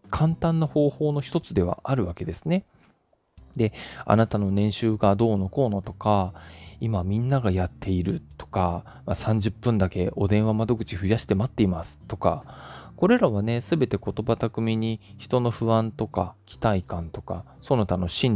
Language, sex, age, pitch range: Japanese, male, 20-39, 95-135 Hz